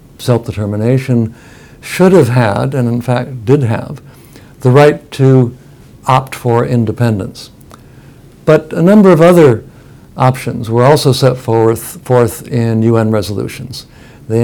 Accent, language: American, English